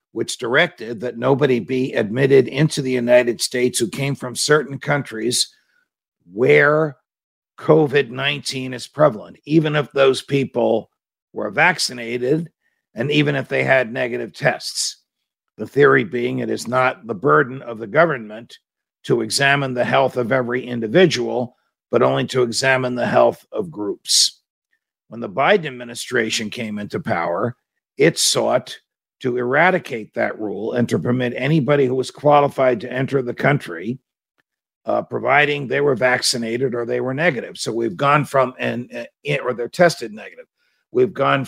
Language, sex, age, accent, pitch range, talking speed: English, male, 50-69, American, 120-150 Hz, 150 wpm